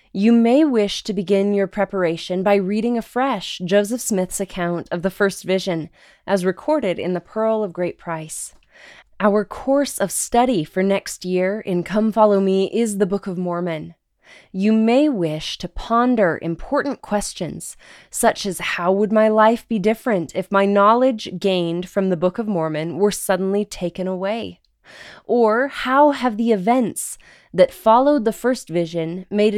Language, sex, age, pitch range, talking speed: English, female, 20-39, 180-225 Hz, 160 wpm